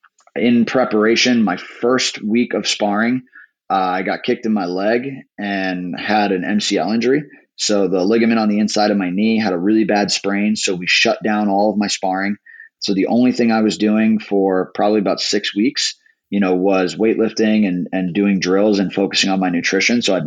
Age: 30-49